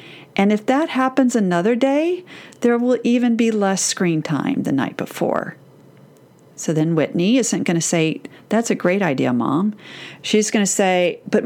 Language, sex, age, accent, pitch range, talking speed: English, female, 40-59, American, 185-250 Hz, 175 wpm